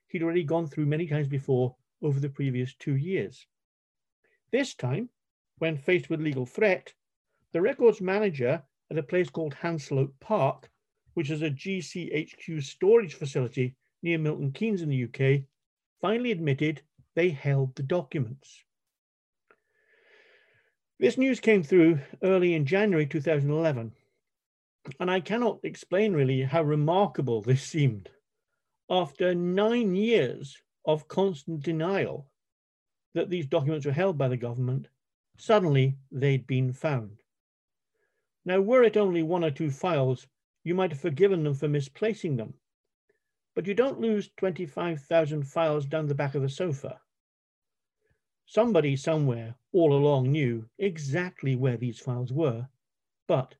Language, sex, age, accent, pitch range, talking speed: English, male, 50-69, British, 135-185 Hz, 135 wpm